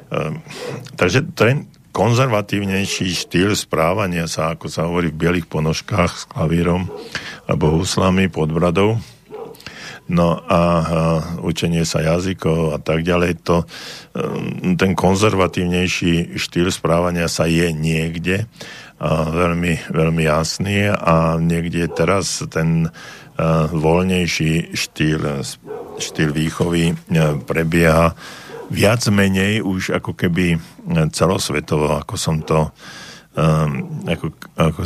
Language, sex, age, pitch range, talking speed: Slovak, male, 50-69, 80-90 Hz, 100 wpm